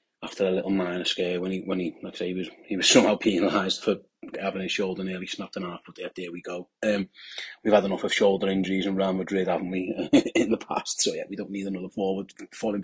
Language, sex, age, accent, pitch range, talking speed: English, male, 30-49, British, 95-100 Hz, 250 wpm